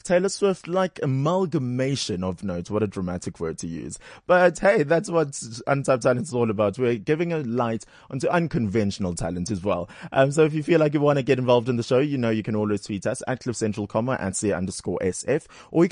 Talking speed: 225 wpm